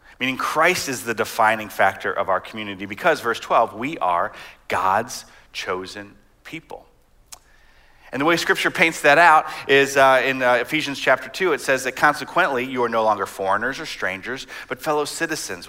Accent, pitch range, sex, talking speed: American, 110-145 Hz, male, 170 wpm